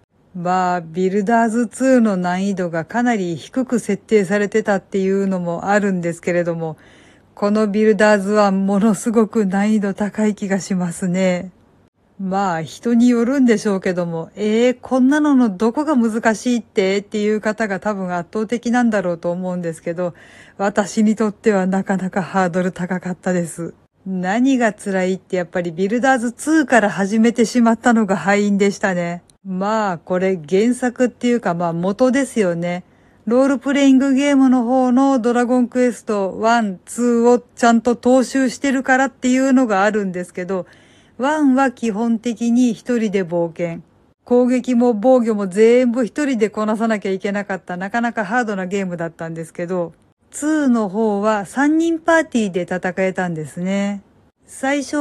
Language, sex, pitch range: Japanese, female, 190-245 Hz